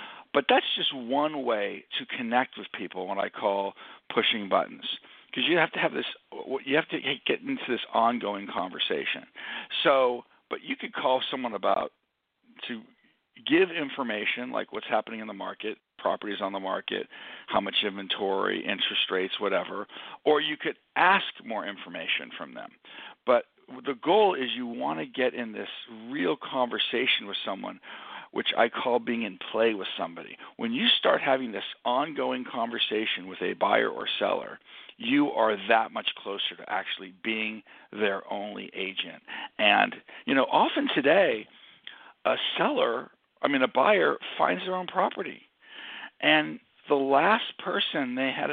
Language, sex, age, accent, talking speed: English, male, 50-69, American, 160 wpm